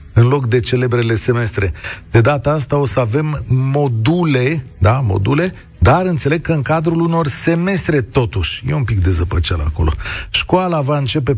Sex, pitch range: male, 120-170 Hz